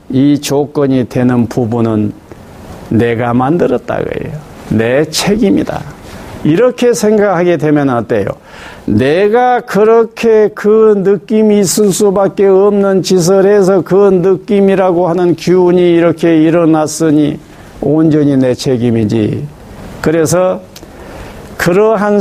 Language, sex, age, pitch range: Korean, male, 50-69, 125-195 Hz